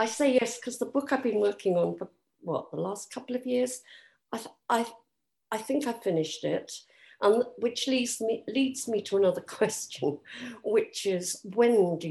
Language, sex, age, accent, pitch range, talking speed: English, female, 50-69, British, 160-240 Hz, 195 wpm